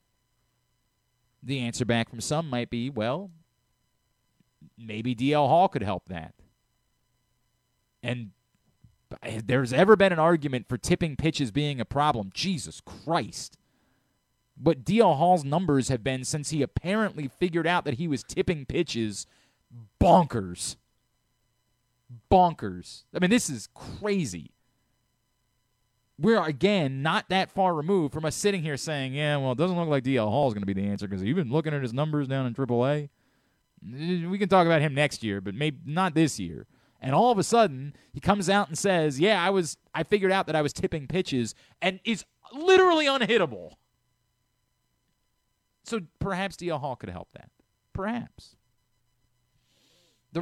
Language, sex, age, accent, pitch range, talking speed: English, male, 30-49, American, 125-185 Hz, 155 wpm